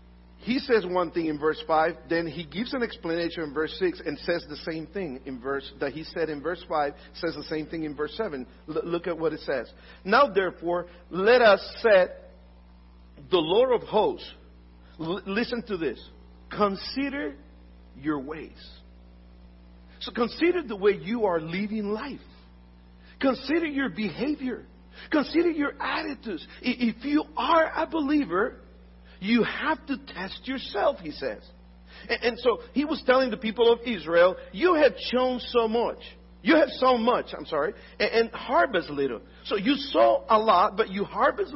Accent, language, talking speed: American, English, 165 wpm